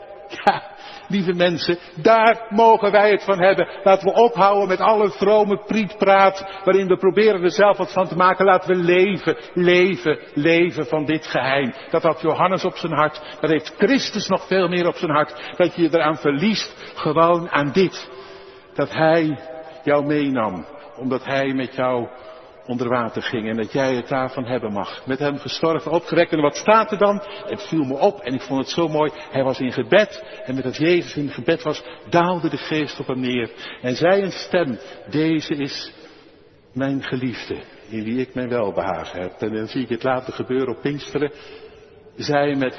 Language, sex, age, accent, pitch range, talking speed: Dutch, male, 60-79, Dutch, 140-190 Hz, 190 wpm